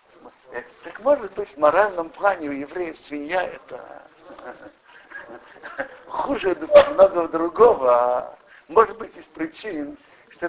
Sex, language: male, Russian